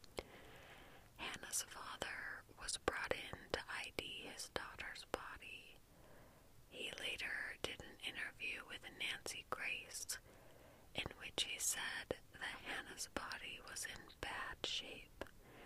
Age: 30-49